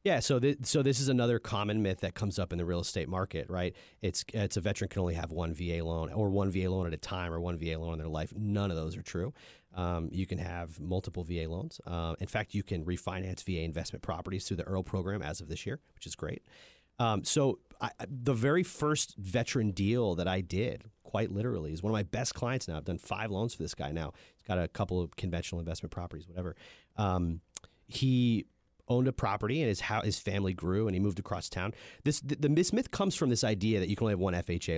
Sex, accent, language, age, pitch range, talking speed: male, American, English, 30-49, 90-120 Hz, 245 wpm